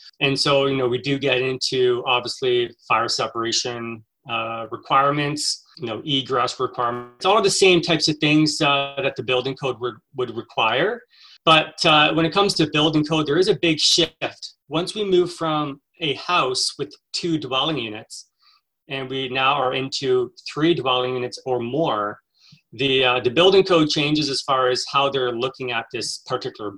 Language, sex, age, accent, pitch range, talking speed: English, male, 30-49, American, 125-155 Hz, 180 wpm